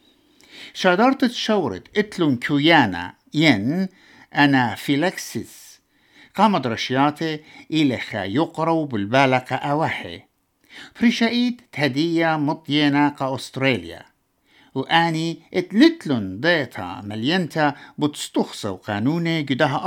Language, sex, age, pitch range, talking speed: English, male, 60-79, 130-190 Hz, 80 wpm